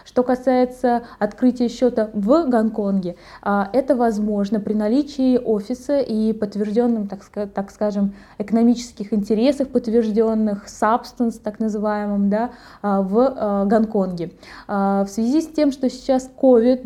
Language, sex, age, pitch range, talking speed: Russian, female, 20-39, 205-240 Hz, 110 wpm